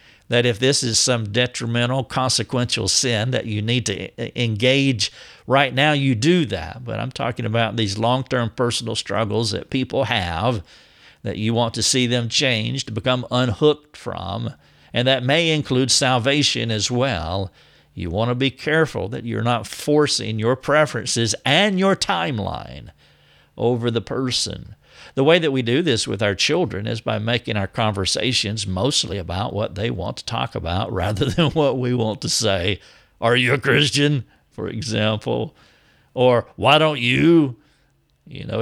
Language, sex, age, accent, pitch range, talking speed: English, male, 50-69, American, 110-130 Hz, 165 wpm